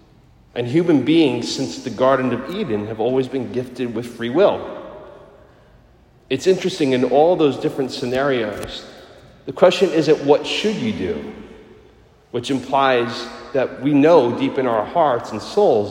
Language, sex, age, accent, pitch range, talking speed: English, male, 40-59, American, 120-145 Hz, 150 wpm